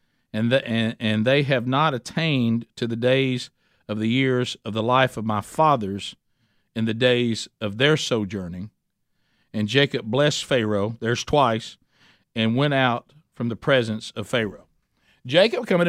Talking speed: 160 wpm